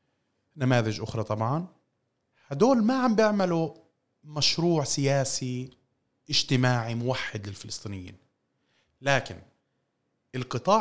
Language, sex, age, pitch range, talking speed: Arabic, male, 30-49, 105-145 Hz, 80 wpm